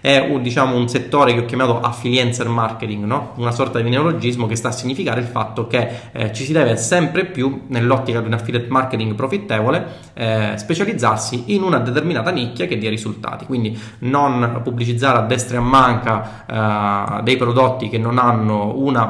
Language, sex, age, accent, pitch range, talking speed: Italian, male, 20-39, native, 115-135 Hz, 180 wpm